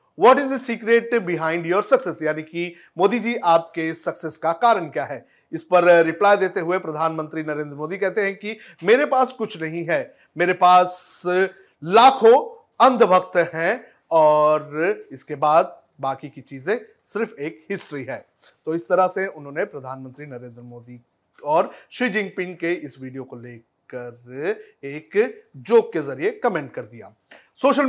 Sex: male